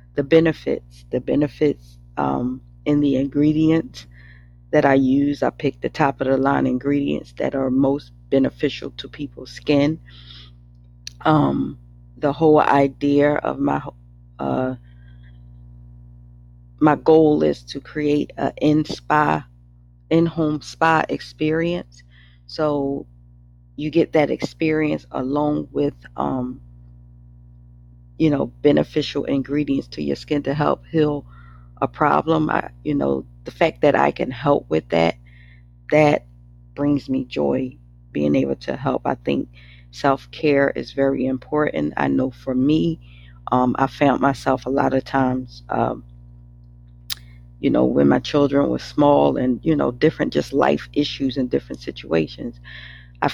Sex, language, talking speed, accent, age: female, English, 135 wpm, American, 40-59